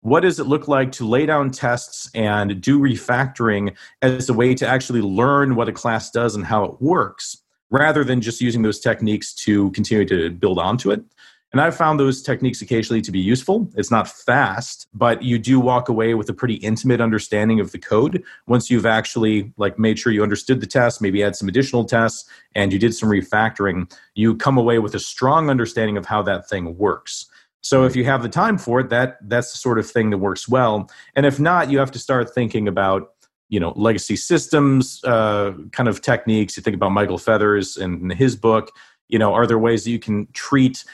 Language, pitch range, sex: English, 105-125 Hz, male